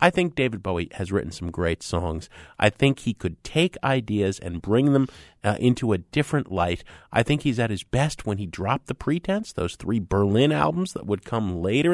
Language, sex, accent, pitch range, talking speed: English, male, American, 95-155 Hz, 210 wpm